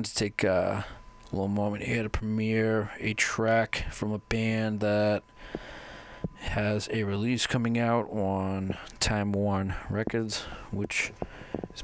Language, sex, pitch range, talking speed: English, male, 95-110 Hz, 130 wpm